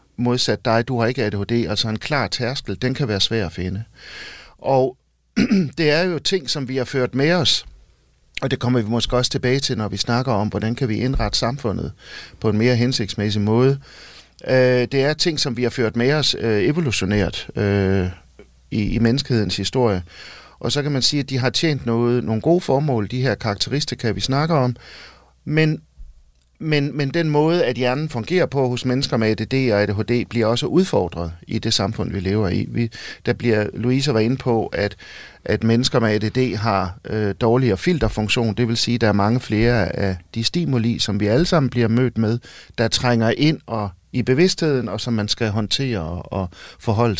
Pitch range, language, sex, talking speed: 105-130 Hz, Danish, male, 195 wpm